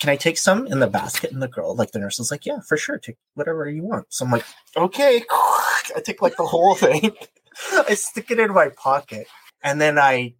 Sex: male